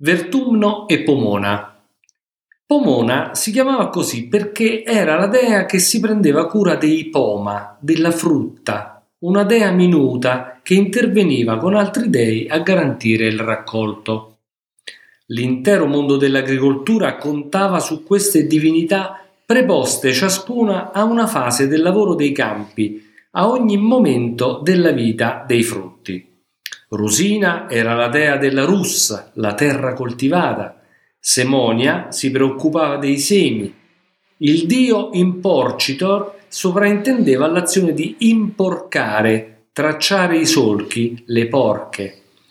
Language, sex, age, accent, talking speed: Italian, male, 50-69, native, 115 wpm